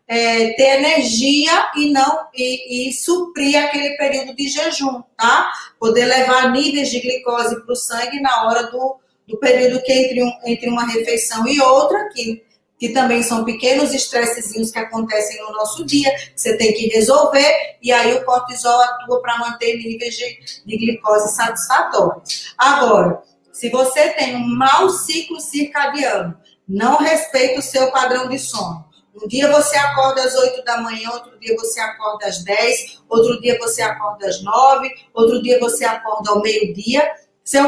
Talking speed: 165 wpm